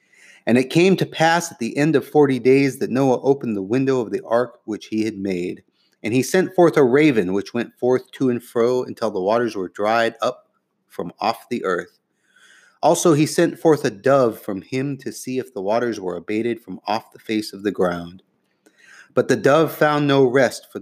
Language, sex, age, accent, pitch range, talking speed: English, male, 30-49, American, 105-145 Hz, 215 wpm